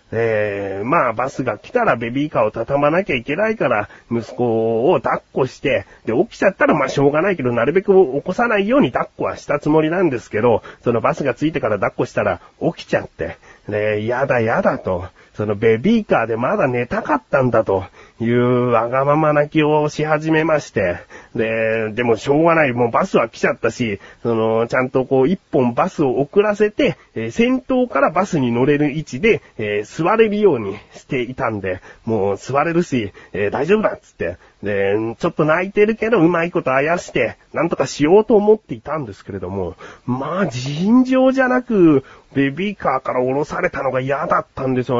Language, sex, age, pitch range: Japanese, male, 30-49, 120-175 Hz